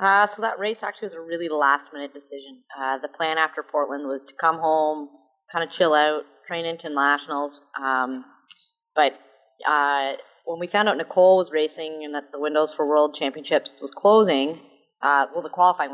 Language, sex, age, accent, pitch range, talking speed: English, female, 30-49, American, 145-175 Hz, 185 wpm